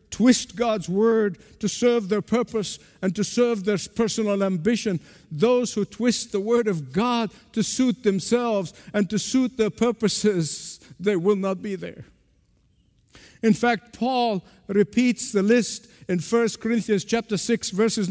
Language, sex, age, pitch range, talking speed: English, male, 50-69, 185-235 Hz, 150 wpm